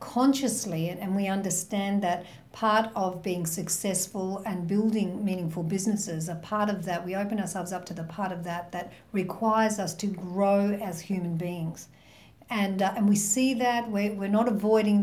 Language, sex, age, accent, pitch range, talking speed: English, female, 50-69, Australian, 180-215 Hz, 175 wpm